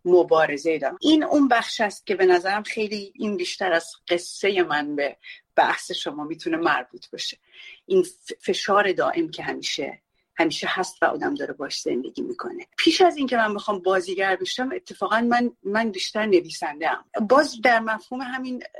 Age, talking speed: 30-49, 165 wpm